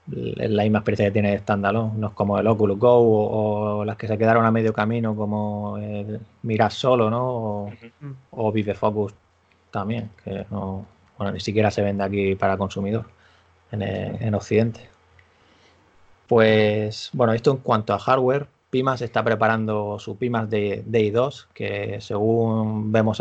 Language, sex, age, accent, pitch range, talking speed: Spanish, male, 20-39, Spanish, 100-115 Hz, 165 wpm